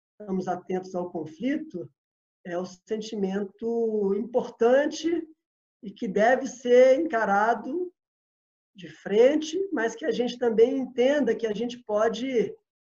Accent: Brazilian